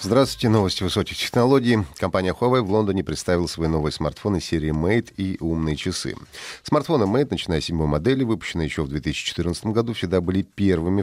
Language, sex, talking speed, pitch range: Russian, male, 165 wpm, 80-105 Hz